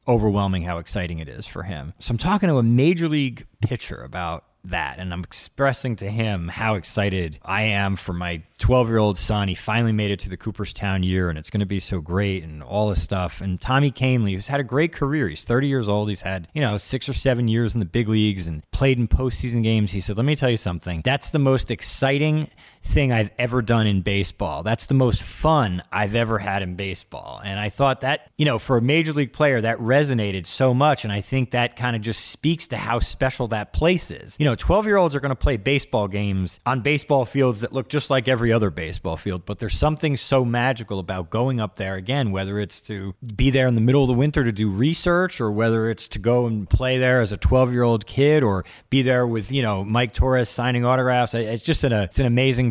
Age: 30-49